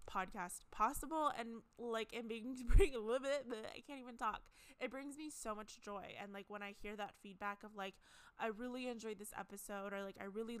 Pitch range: 195-235 Hz